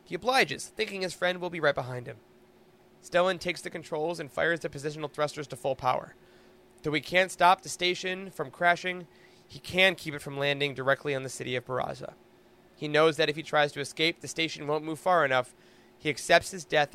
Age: 20-39